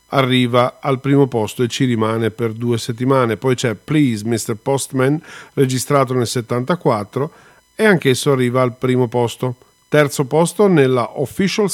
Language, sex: Italian, male